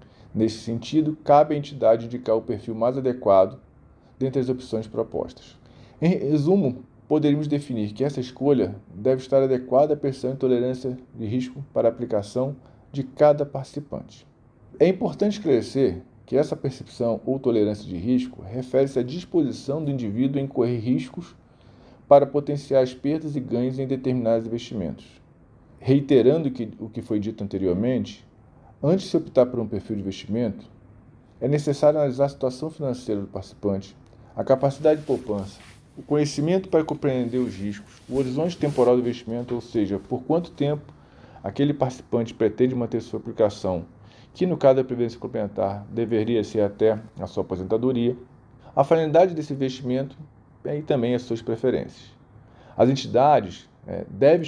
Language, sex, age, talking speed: Portuguese, male, 40-59, 150 wpm